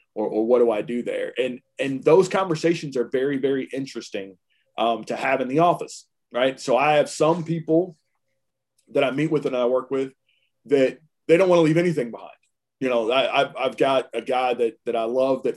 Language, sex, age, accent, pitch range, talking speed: English, male, 30-49, American, 125-155 Hz, 210 wpm